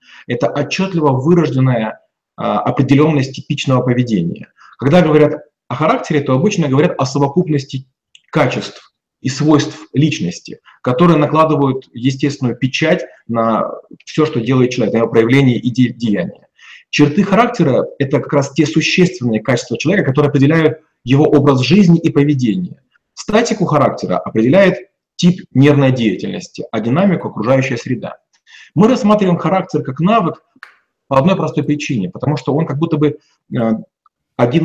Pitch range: 130-165 Hz